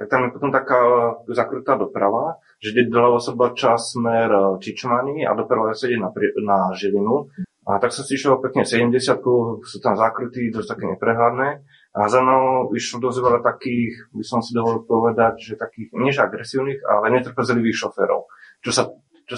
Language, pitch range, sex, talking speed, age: Slovak, 105-125 Hz, male, 165 wpm, 20-39